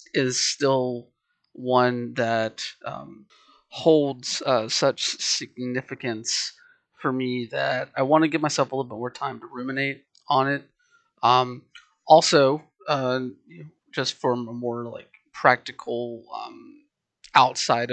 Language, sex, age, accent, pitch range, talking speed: English, male, 30-49, American, 120-145 Hz, 125 wpm